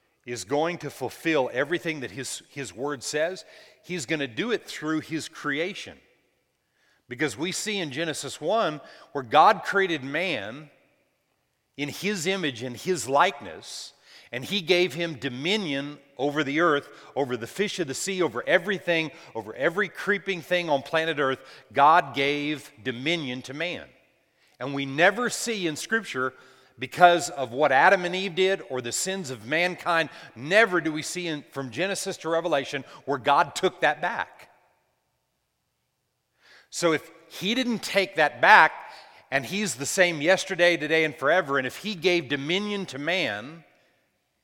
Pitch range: 140-185 Hz